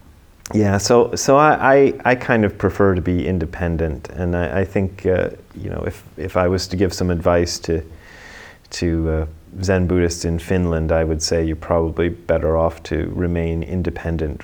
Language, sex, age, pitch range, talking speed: English, male, 30-49, 80-90 Hz, 185 wpm